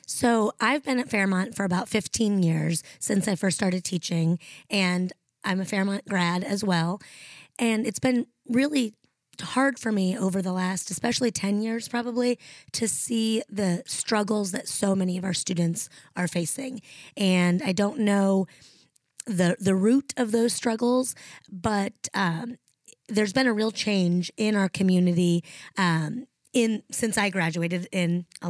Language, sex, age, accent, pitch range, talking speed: English, female, 20-39, American, 180-225 Hz, 155 wpm